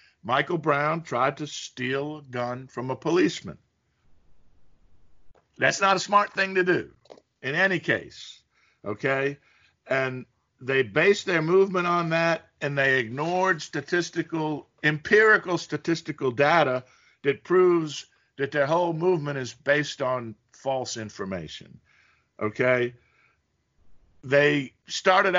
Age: 50-69